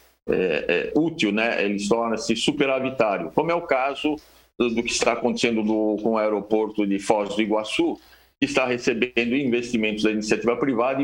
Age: 60-79